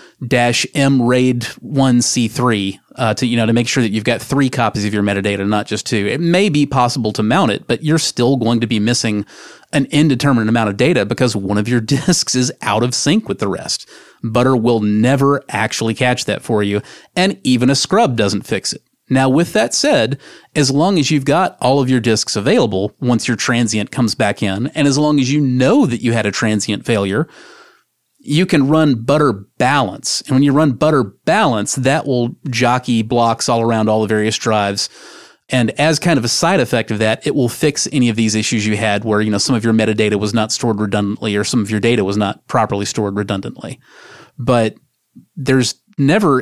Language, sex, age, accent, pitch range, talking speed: English, male, 30-49, American, 110-135 Hz, 210 wpm